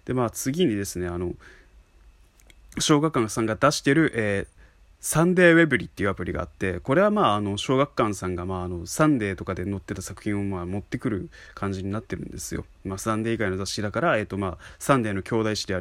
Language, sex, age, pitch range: Japanese, male, 20-39, 95-125 Hz